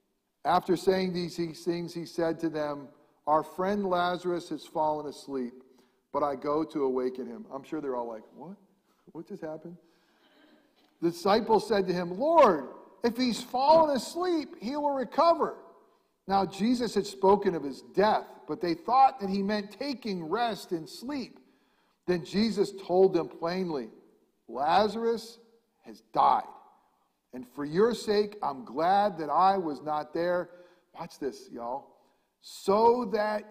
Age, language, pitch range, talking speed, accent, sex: 50-69, English, 155-220 Hz, 150 wpm, American, male